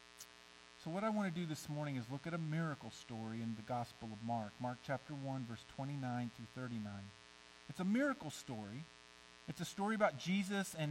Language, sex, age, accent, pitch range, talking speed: English, male, 50-69, American, 115-180 Hz, 200 wpm